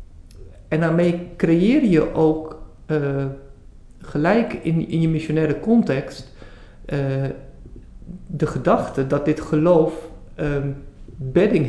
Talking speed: 100 wpm